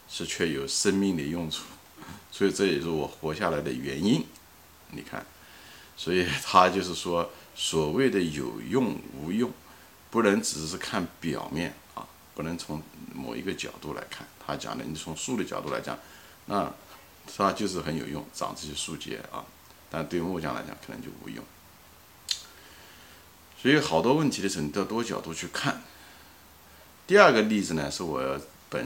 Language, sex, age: Chinese, male, 50-69